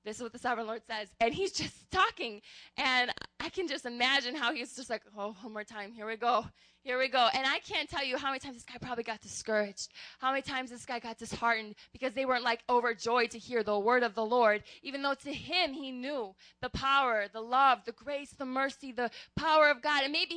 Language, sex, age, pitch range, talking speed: English, female, 20-39, 220-275 Hz, 240 wpm